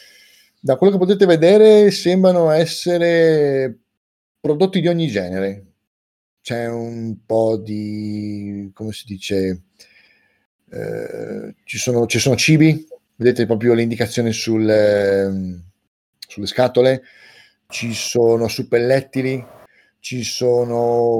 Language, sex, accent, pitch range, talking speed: Italian, male, native, 105-145 Hz, 100 wpm